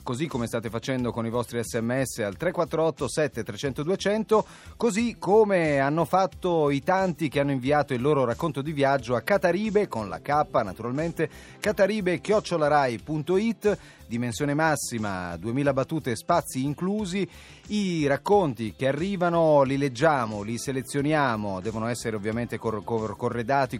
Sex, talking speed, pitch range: male, 135 wpm, 115-160 Hz